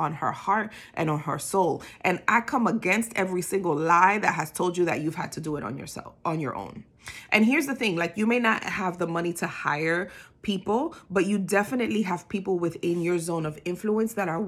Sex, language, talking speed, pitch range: female, English, 230 wpm, 180-230 Hz